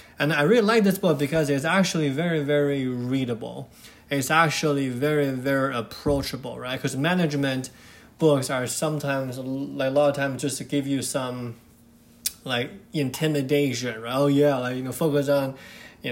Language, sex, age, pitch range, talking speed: English, male, 20-39, 130-160 Hz, 165 wpm